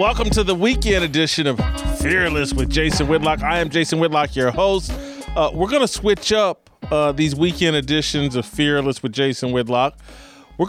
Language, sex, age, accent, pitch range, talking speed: English, male, 40-59, American, 120-155 Hz, 180 wpm